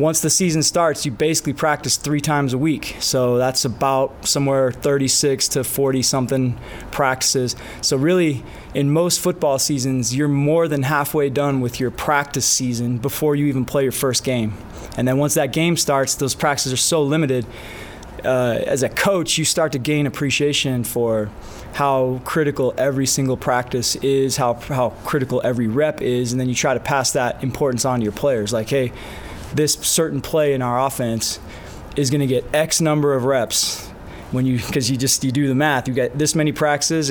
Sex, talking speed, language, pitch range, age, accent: male, 190 wpm, English, 125-150 Hz, 20-39, American